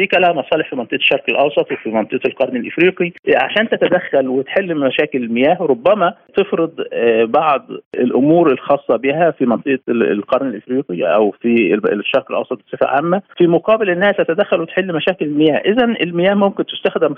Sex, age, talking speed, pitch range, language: male, 50-69, 145 wpm, 145-215 Hz, Arabic